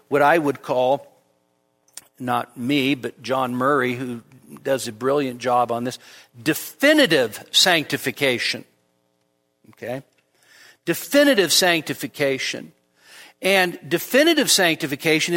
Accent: American